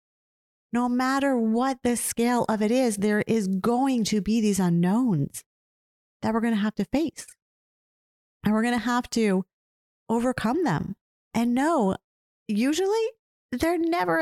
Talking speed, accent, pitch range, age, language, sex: 150 wpm, American, 185-250 Hz, 30-49, English, female